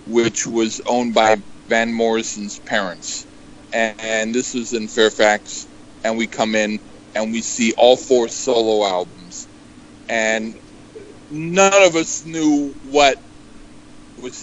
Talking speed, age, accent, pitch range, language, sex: 130 wpm, 50-69, American, 115-160 Hz, English, male